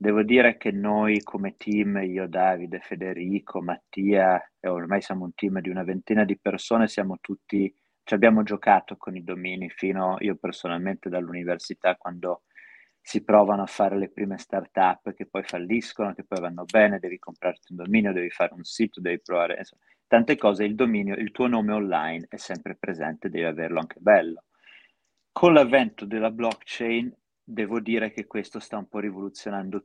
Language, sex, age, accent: Italian, male, 30-49, native